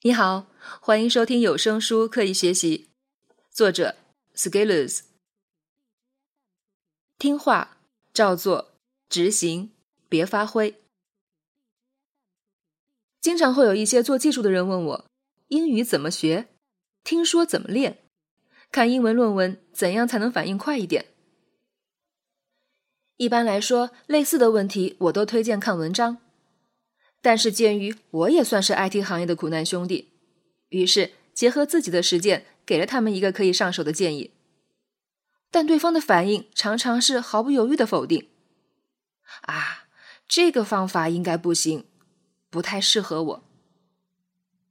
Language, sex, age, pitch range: Chinese, female, 20-39, 185-245 Hz